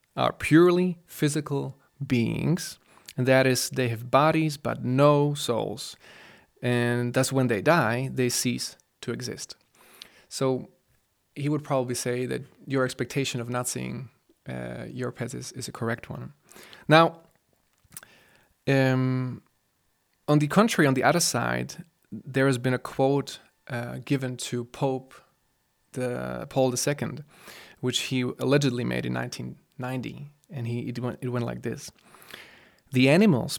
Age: 20-39